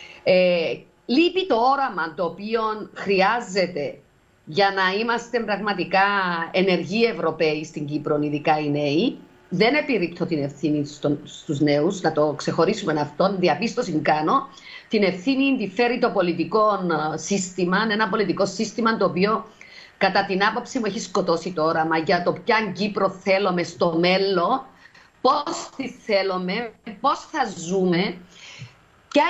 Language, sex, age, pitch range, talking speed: Greek, female, 50-69, 170-230 Hz, 135 wpm